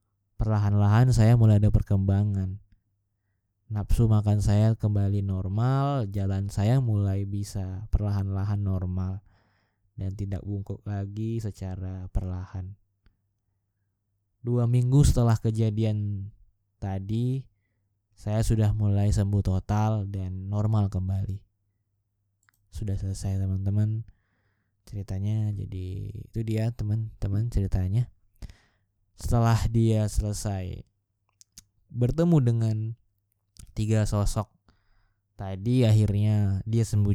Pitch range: 100-110 Hz